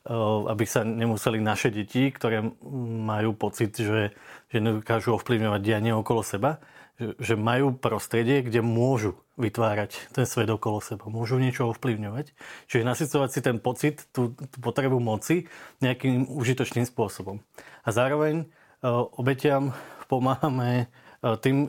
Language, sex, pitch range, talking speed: Slovak, male, 115-130 Hz, 125 wpm